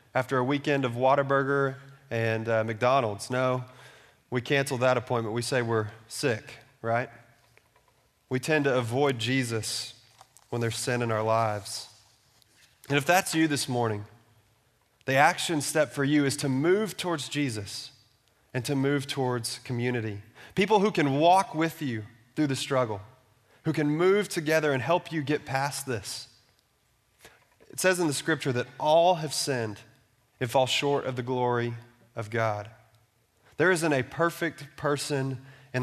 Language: English